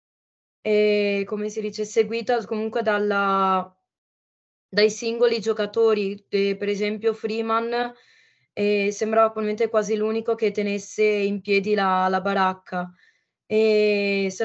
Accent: native